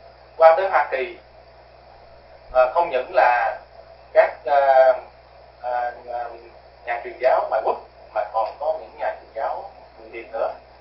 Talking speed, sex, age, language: 145 wpm, male, 30-49, Vietnamese